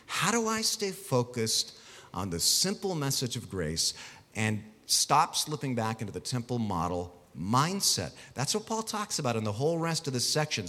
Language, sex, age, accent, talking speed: English, male, 40-59, American, 180 wpm